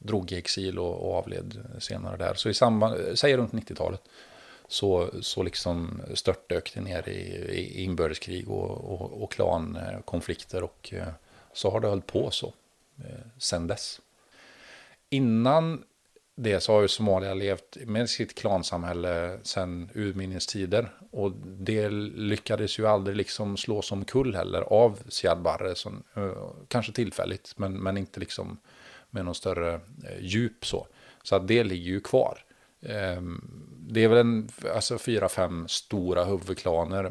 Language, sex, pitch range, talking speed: Swedish, male, 95-110 Hz, 140 wpm